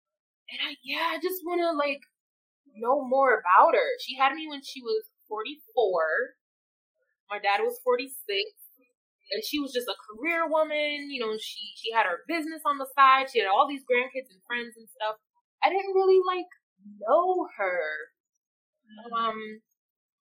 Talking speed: 165 wpm